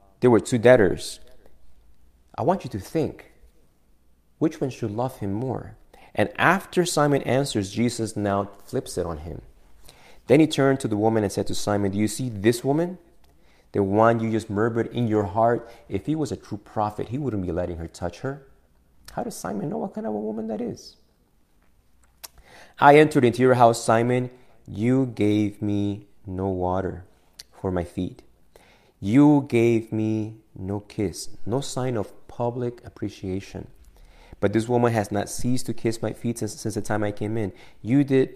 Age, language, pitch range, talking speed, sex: 30-49, English, 95-125 Hz, 180 wpm, male